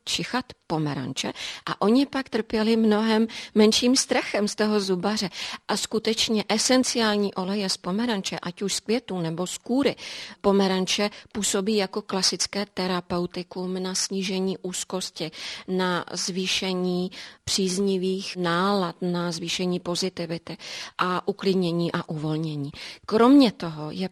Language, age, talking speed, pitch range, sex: Czech, 30-49, 115 wpm, 185-215 Hz, female